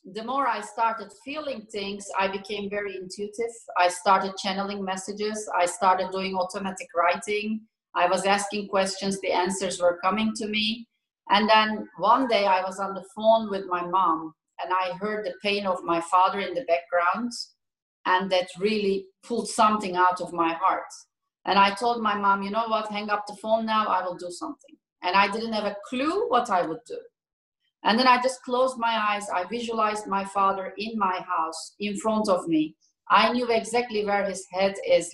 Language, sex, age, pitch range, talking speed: English, female, 30-49, 180-220 Hz, 195 wpm